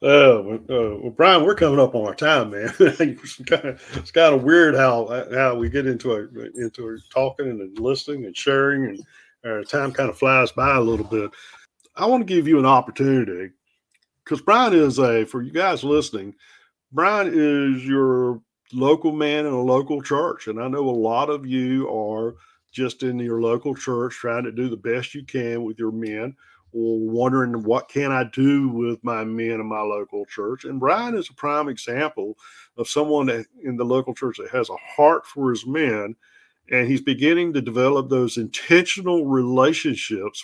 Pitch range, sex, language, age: 115-140 Hz, male, English, 50-69